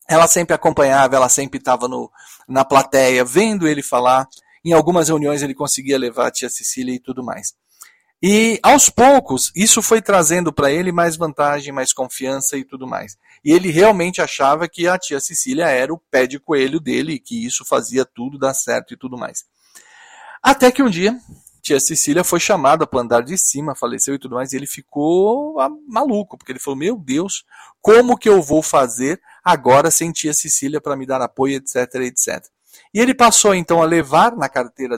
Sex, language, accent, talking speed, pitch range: male, Portuguese, Brazilian, 190 wpm, 135-195 Hz